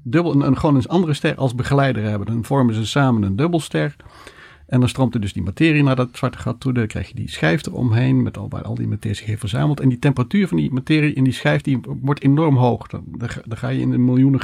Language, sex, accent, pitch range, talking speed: Dutch, male, Dutch, 125-150 Hz, 260 wpm